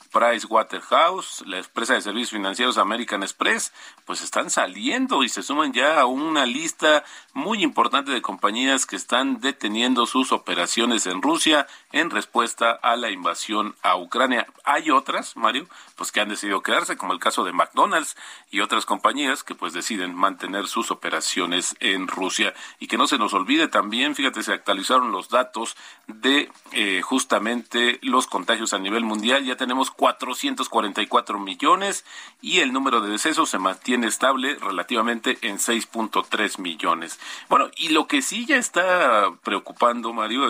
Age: 40-59